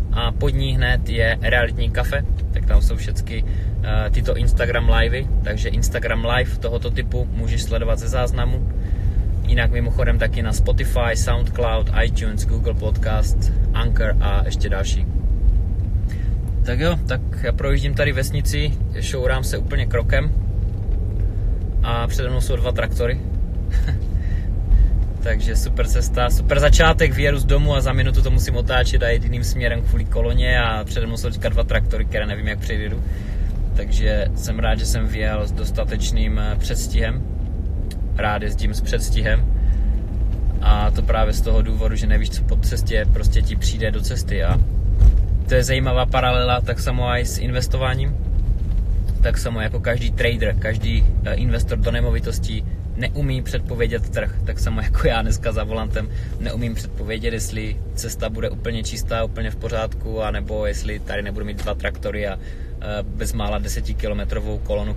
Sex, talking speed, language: male, 150 wpm, Czech